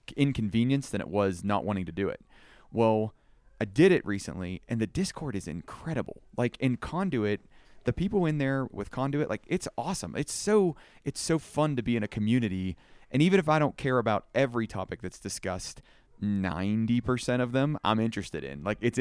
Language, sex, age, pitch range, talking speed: English, male, 30-49, 100-125 Hz, 190 wpm